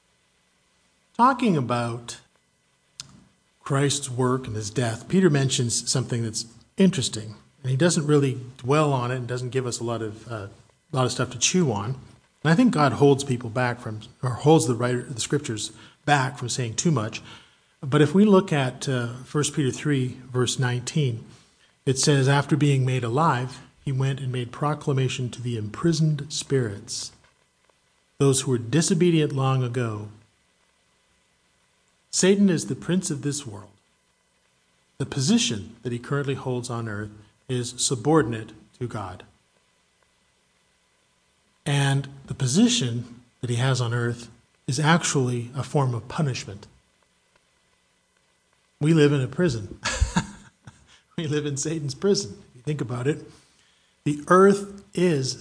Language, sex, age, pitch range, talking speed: English, male, 40-59, 120-145 Hz, 145 wpm